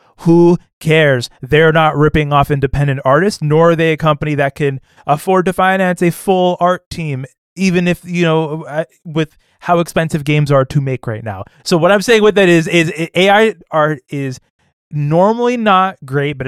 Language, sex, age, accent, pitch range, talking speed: English, male, 20-39, American, 130-175 Hz, 180 wpm